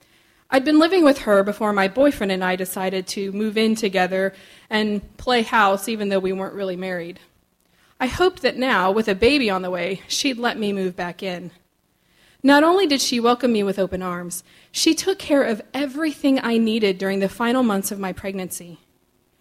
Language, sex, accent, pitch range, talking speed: English, female, American, 195-270 Hz, 195 wpm